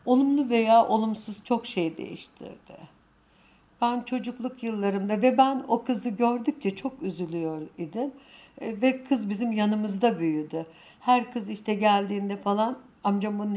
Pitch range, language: 175-230 Hz, Turkish